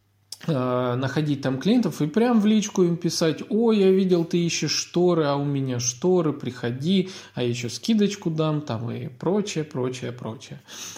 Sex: male